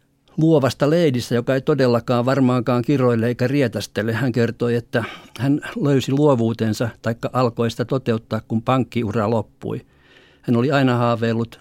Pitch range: 110-130 Hz